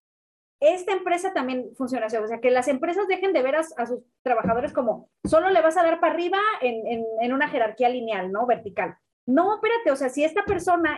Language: Spanish